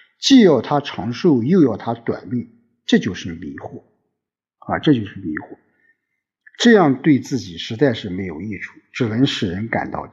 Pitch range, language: 100-145 Hz, Chinese